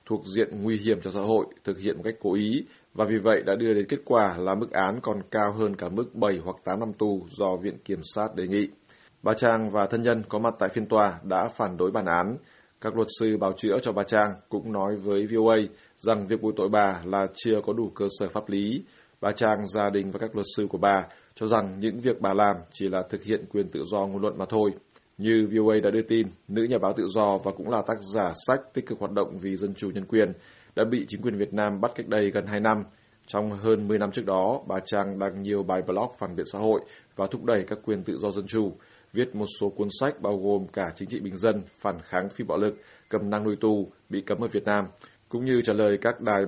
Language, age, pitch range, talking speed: Vietnamese, 20-39, 100-110 Hz, 260 wpm